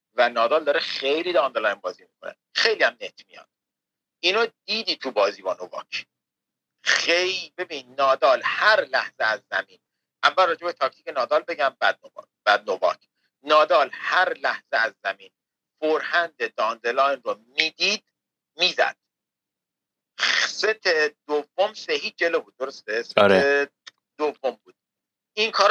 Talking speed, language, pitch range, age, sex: 120 wpm, Persian, 145-215 Hz, 50-69, male